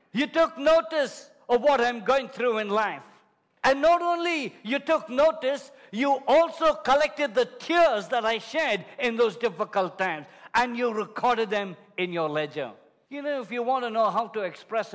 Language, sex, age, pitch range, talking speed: English, male, 50-69, 205-285 Hz, 180 wpm